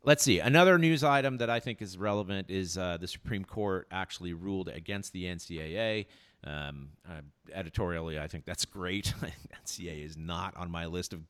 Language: English